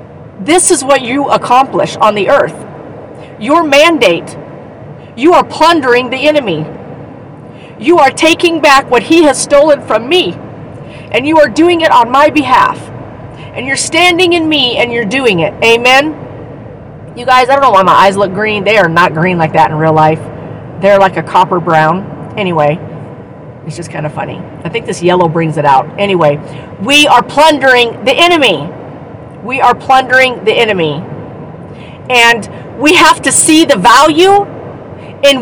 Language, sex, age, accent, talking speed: English, female, 40-59, American, 170 wpm